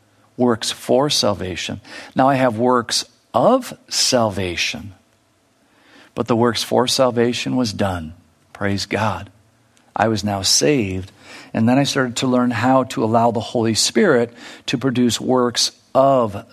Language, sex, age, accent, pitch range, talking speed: English, male, 50-69, American, 115-150 Hz, 140 wpm